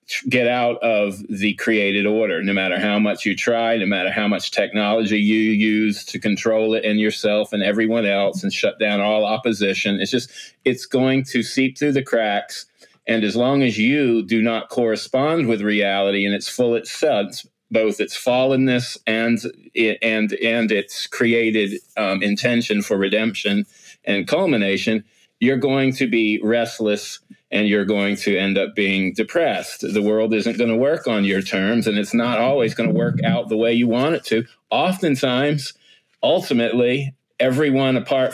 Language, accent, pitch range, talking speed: English, American, 105-130 Hz, 170 wpm